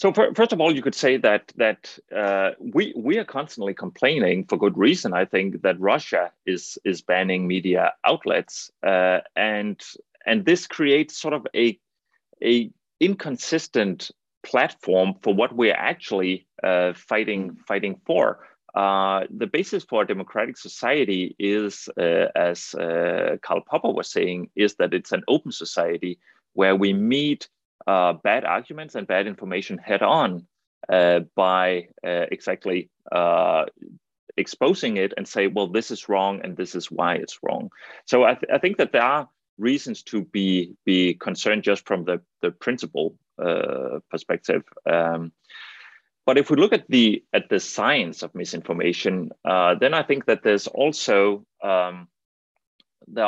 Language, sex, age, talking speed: English, male, 30-49, 155 wpm